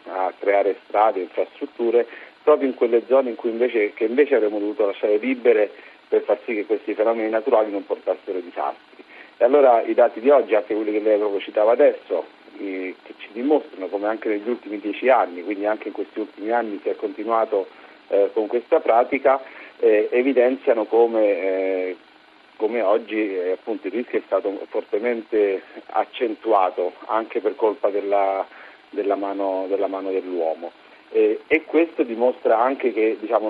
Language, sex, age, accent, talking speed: Italian, male, 40-59, native, 155 wpm